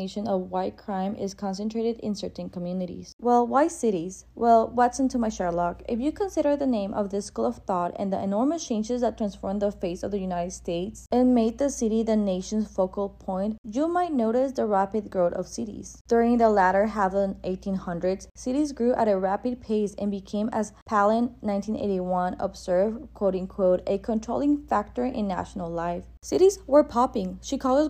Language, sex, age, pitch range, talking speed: English, female, 20-39, 195-245 Hz, 180 wpm